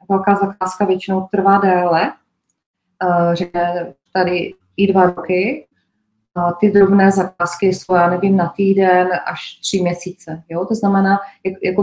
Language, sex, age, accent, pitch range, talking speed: Czech, female, 20-39, native, 180-200 Hz, 130 wpm